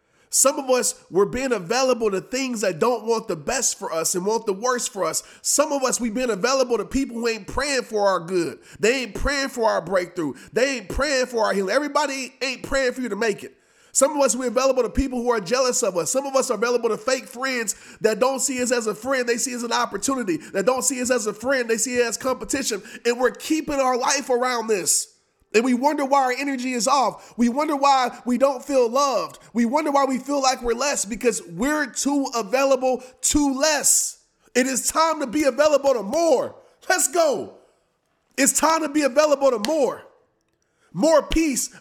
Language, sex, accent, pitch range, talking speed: English, male, American, 240-290 Hz, 220 wpm